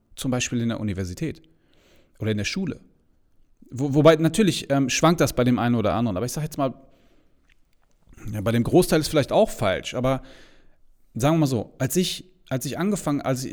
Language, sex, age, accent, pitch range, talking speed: German, male, 40-59, German, 110-155 Hz, 200 wpm